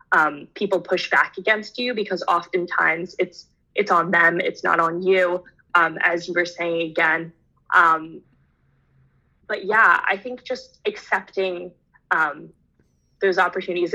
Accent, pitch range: American, 175-195 Hz